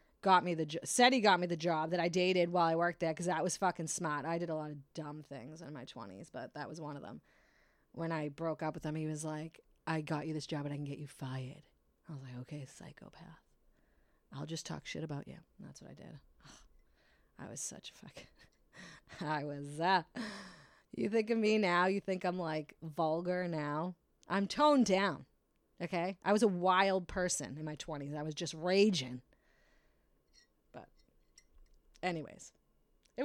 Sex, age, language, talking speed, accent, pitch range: female, 30-49, English, 200 wpm, American, 155-190 Hz